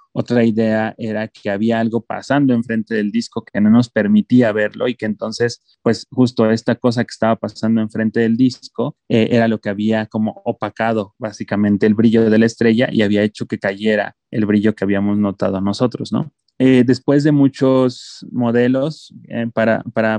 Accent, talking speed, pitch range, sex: Mexican, 180 wpm, 105-120 Hz, male